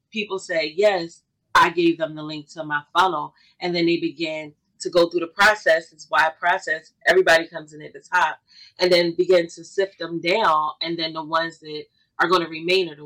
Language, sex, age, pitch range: English, female, 30-49, 155-195 Hz